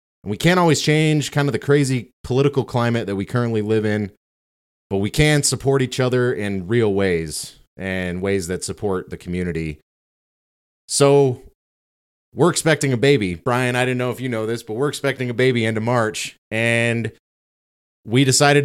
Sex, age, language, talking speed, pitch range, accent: male, 30-49, English, 175 wpm, 95-125 Hz, American